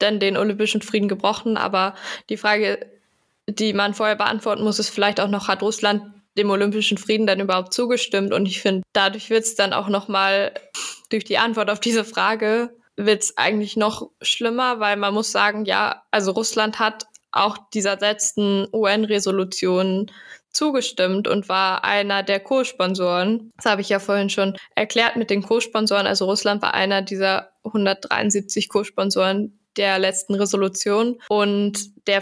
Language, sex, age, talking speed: German, female, 10-29, 160 wpm